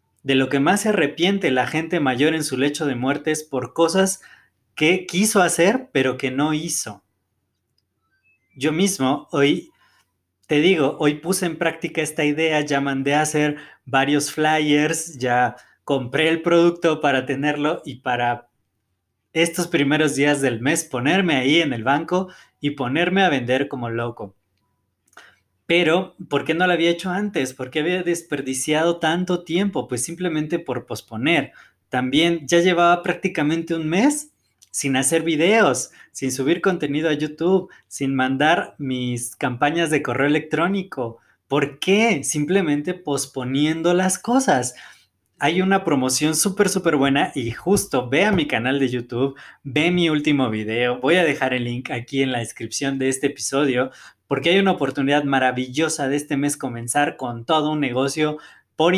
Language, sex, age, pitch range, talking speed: Spanish, male, 20-39, 130-170 Hz, 155 wpm